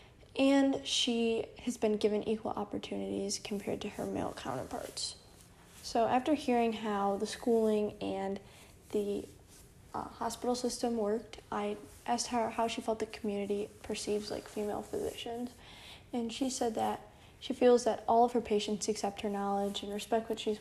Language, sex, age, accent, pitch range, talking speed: English, female, 10-29, American, 205-230 Hz, 155 wpm